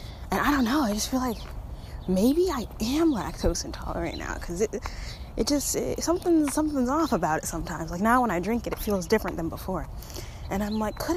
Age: 10-29